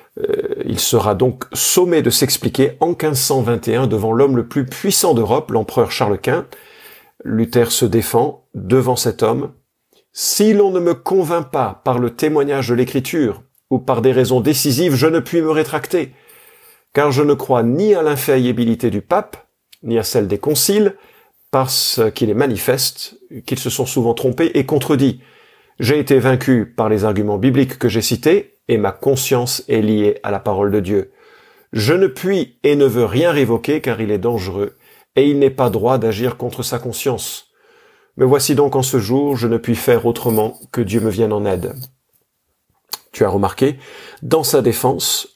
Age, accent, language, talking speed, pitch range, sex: 50-69, French, French, 175 wpm, 115-155 Hz, male